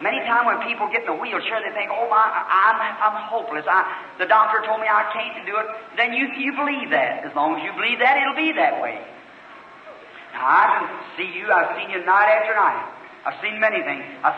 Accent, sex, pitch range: American, male, 190-250 Hz